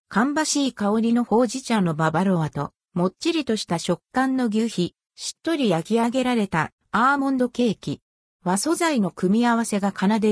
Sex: female